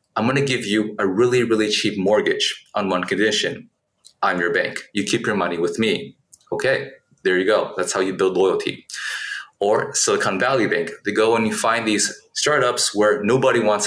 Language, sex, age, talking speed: English, male, 30-49, 195 wpm